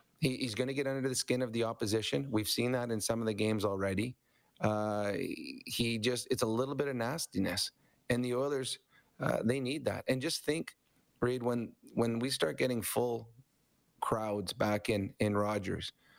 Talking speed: 180 wpm